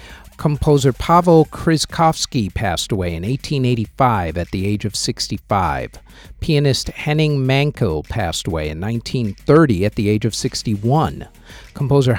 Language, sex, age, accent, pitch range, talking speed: English, male, 50-69, American, 105-145 Hz, 125 wpm